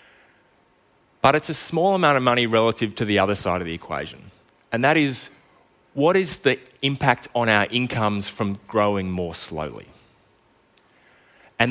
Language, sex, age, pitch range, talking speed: English, male, 30-49, 95-125 Hz, 155 wpm